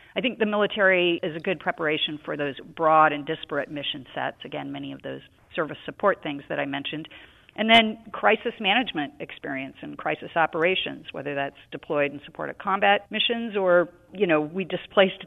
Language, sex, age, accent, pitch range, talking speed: English, female, 40-59, American, 145-175 Hz, 180 wpm